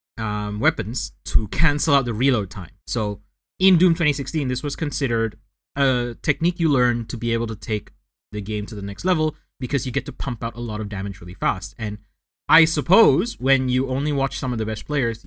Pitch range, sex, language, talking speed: 110-155 Hz, male, English, 210 wpm